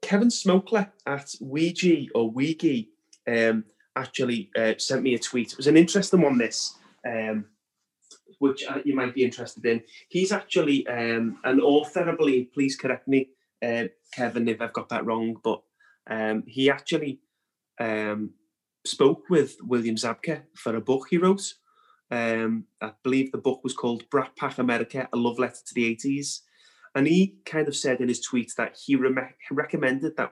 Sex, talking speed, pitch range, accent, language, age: male, 170 wpm, 115-145 Hz, British, English, 30-49